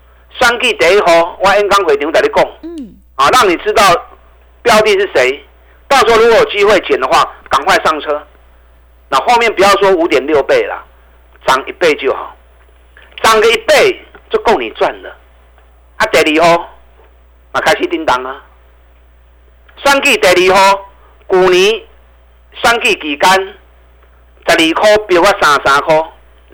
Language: Chinese